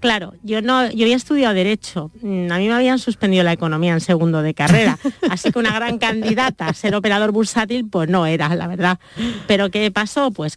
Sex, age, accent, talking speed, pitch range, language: female, 40-59, Spanish, 205 wpm, 175-230 Hz, Spanish